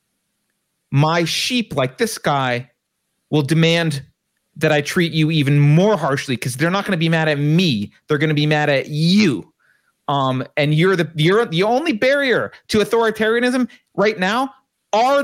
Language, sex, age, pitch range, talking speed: English, male, 30-49, 145-210 Hz, 170 wpm